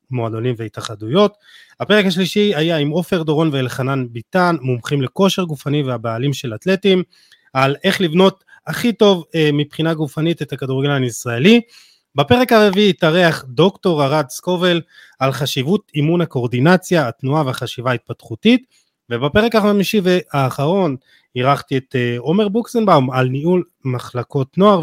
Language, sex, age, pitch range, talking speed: Hebrew, male, 30-49, 130-180 Hz, 120 wpm